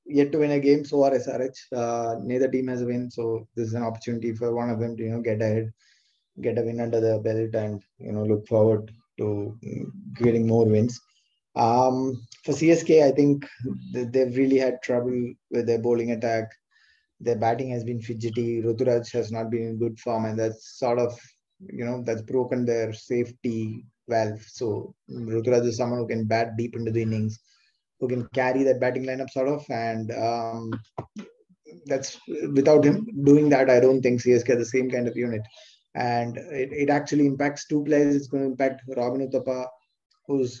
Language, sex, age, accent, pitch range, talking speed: English, male, 20-39, Indian, 115-130 Hz, 195 wpm